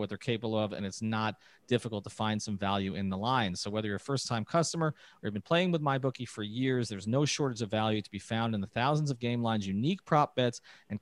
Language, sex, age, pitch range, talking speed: English, male, 40-59, 110-150 Hz, 260 wpm